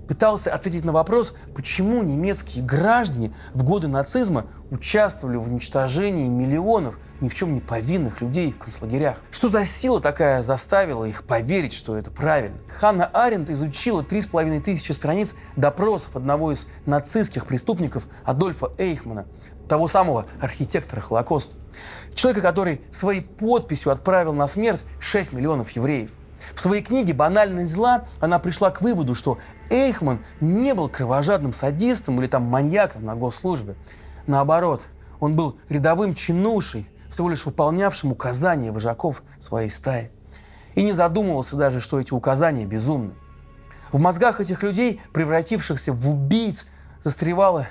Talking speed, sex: 135 wpm, male